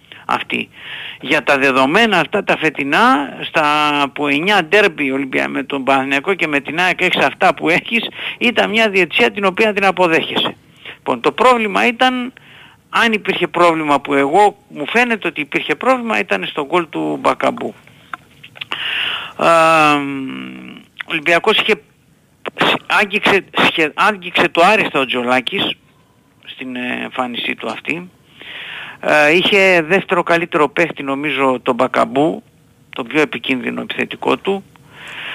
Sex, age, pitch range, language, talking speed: male, 50-69, 140-190 Hz, Greek, 120 wpm